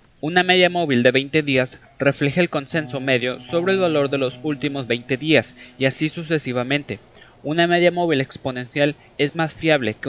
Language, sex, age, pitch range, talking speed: Spanish, male, 20-39, 130-160 Hz, 170 wpm